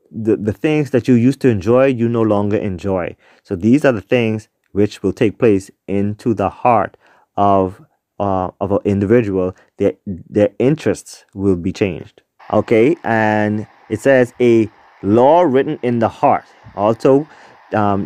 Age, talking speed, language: 30-49, 155 wpm, English